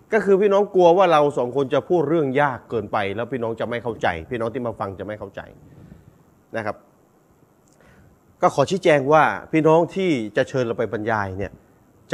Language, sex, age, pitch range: Thai, male, 30-49, 130-170 Hz